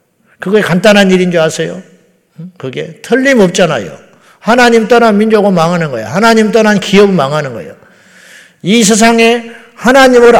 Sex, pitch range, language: male, 165-220 Hz, Korean